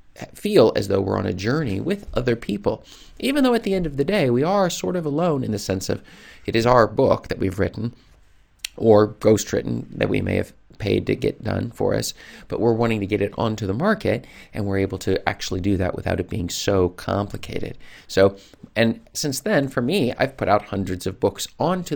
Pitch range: 95-125 Hz